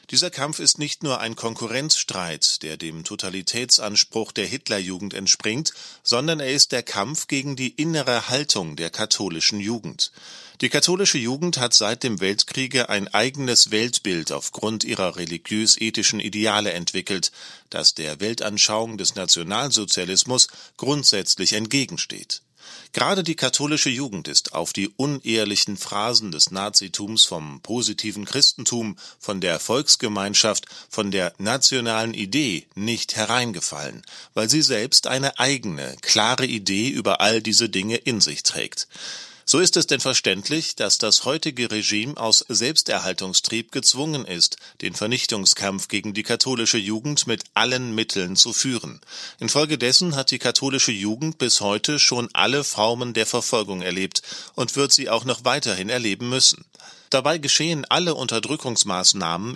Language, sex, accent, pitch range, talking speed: German, male, German, 105-130 Hz, 135 wpm